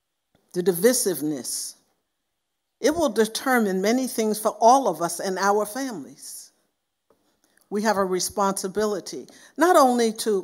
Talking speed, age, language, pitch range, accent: 120 wpm, 50-69, English, 180-230 Hz, American